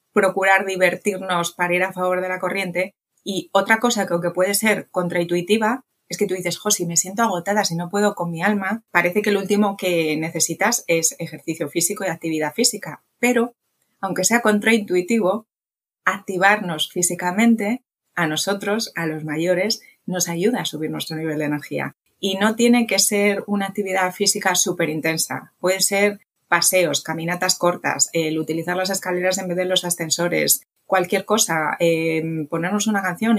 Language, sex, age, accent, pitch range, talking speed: Spanish, female, 30-49, Spanish, 175-210 Hz, 165 wpm